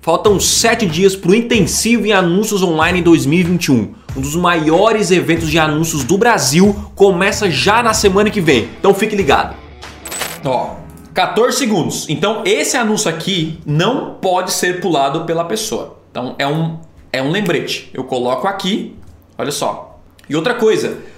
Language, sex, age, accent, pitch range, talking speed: Portuguese, male, 20-39, Brazilian, 155-215 Hz, 155 wpm